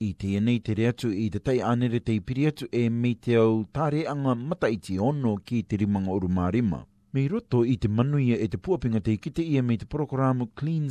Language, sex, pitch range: English, male, 105-130 Hz